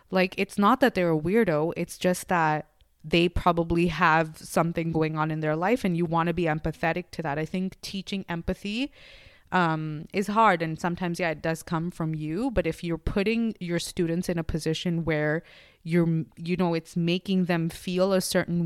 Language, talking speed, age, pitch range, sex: English, 195 wpm, 20-39, 160-180 Hz, female